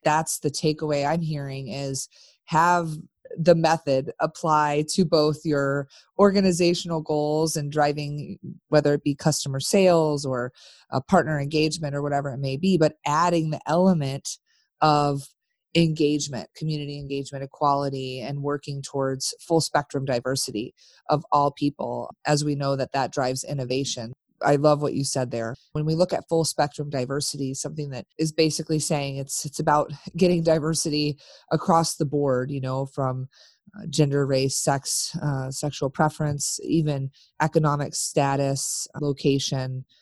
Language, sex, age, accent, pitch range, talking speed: English, female, 30-49, American, 135-160 Hz, 140 wpm